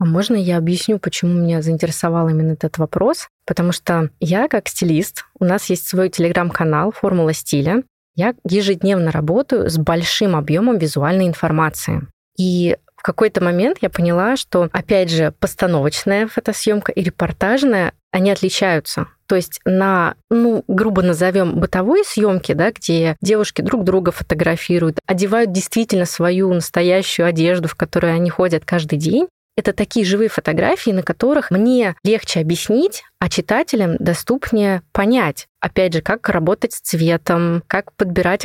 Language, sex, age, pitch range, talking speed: Russian, female, 20-39, 170-205 Hz, 140 wpm